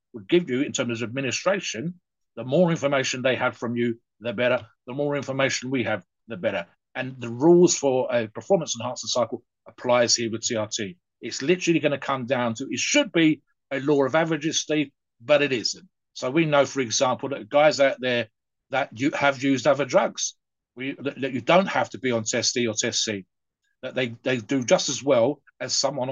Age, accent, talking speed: 50-69, British, 200 wpm